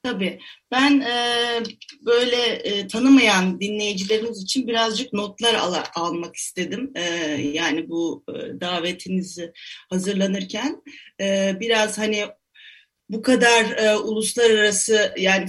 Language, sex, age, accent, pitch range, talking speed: Turkish, female, 30-49, native, 185-235 Hz, 105 wpm